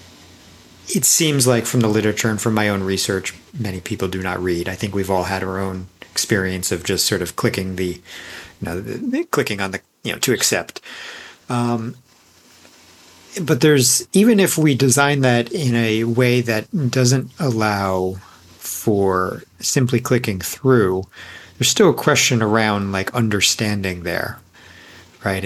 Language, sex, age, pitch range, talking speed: English, male, 40-59, 95-125 Hz, 160 wpm